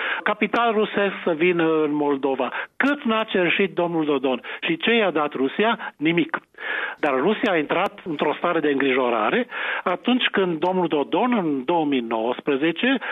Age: 50-69